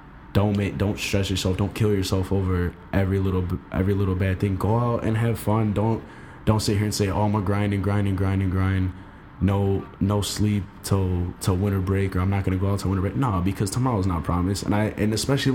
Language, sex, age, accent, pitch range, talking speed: English, male, 20-39, American, 95-105 Hz, 235 wpm